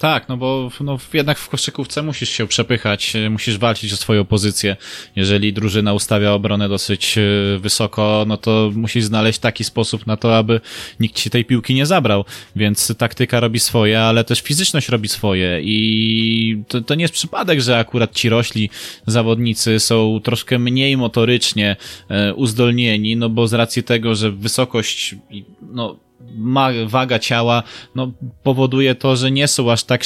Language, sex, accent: Polish, male, native